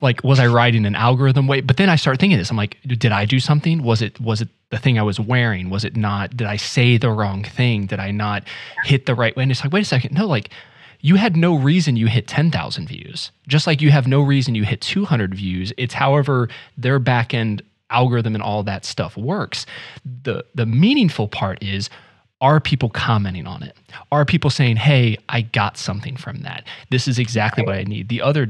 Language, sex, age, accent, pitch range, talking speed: English, male, 20-39, American, 110-140 Hz, 225 wpm